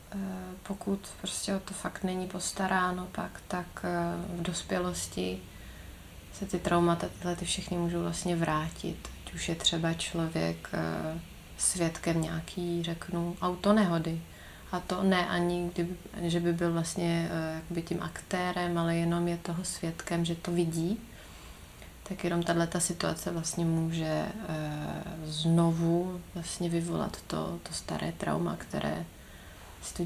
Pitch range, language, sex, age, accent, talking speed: 160-180 Hz, Czech, female, 30-49, native, 130 wpm